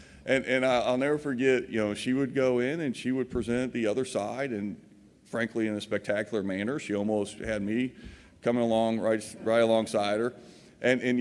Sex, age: male, 40-59